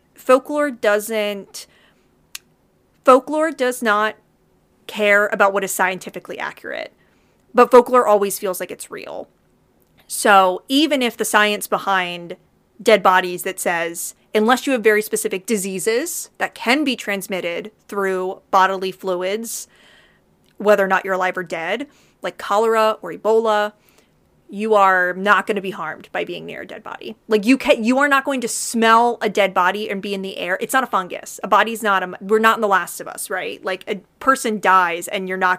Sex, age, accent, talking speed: female, 30-49, American, 175 wpm